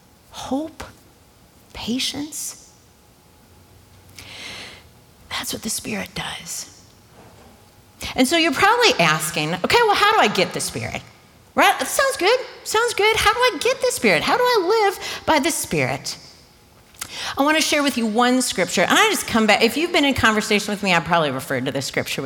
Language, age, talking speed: English, 40-59, 175 wpm